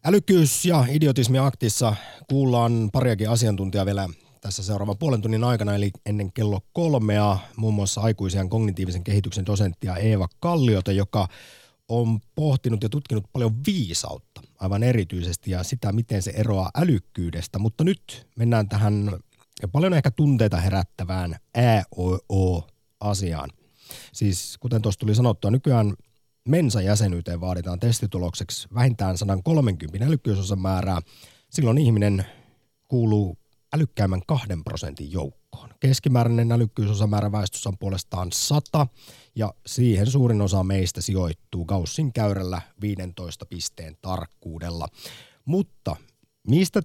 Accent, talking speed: native, 115 wpm